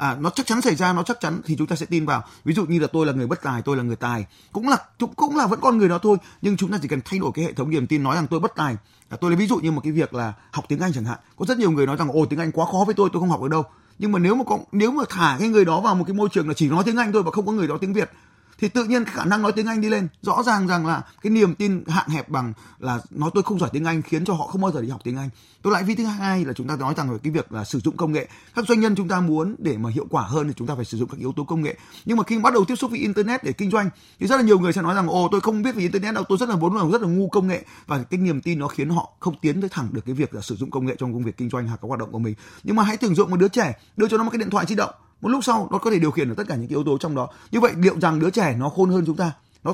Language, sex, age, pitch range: Vietnamese, male, 20-39, 140-205 Hz